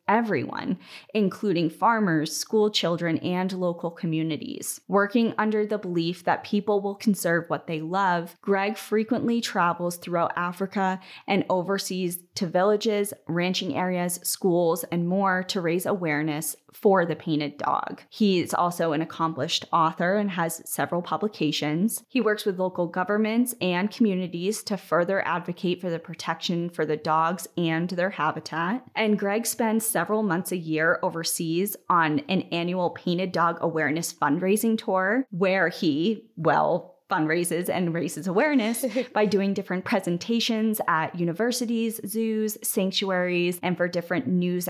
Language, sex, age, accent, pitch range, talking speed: English, female, 10-29, American, 170-210 Hz, 140 wpm